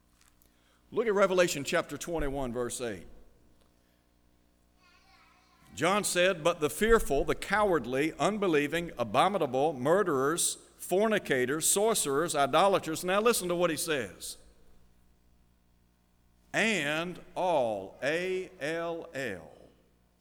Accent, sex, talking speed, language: American, male, 90 wpm, English